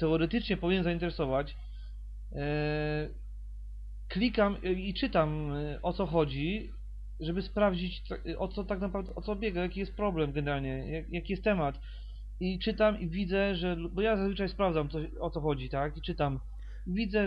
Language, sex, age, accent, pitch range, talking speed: Polish, male, 30-49, native, 150-185 Hz, 145 wpm